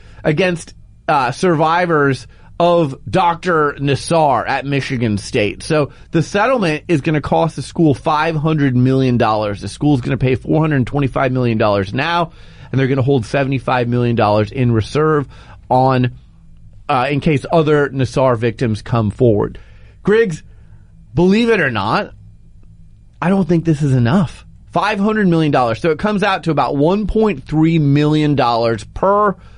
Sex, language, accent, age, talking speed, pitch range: male, English, American, 30-49, 140 wpm, 125-165 Hz